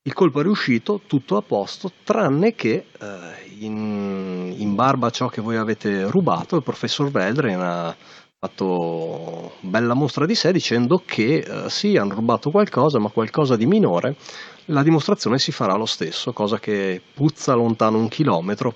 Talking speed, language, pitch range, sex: 160 wpm, Italian, 95-135 Hz, male